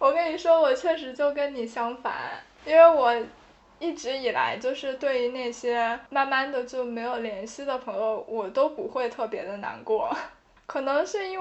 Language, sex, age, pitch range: Chinese, female, 10-29, 230-300 Hz